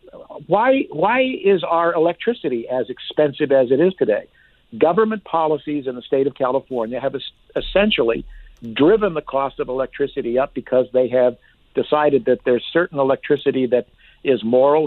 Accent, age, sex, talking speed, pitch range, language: American, 60-79, male, 150 wpm, 125-160 Hz, English